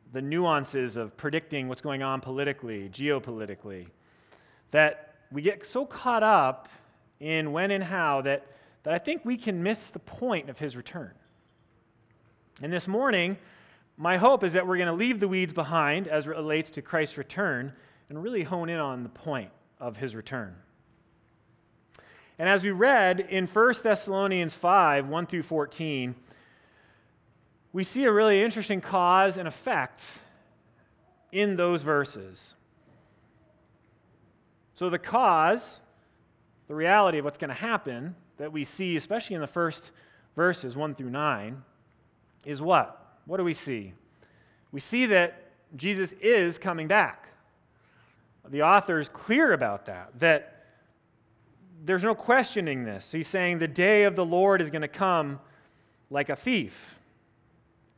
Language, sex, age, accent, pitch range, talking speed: English, male, 30-49, American, 130-190 Hz, 145 wpm